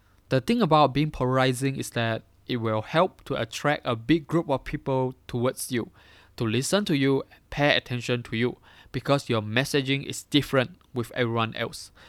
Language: English